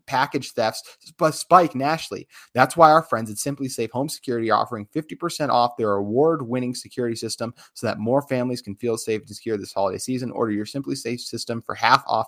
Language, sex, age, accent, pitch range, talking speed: English, male, 30-49, American, 110-130 Hz, 210 wpm